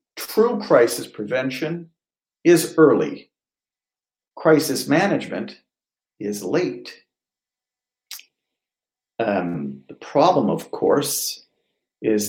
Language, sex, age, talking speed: English, male, 50-69, 75 wpm